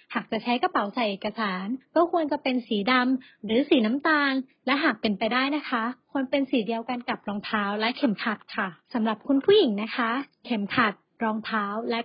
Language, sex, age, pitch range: Thai, female, 30-49, 220-285 Hz